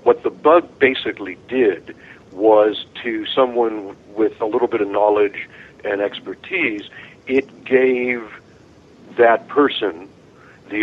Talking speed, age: 115 wpm, 50-69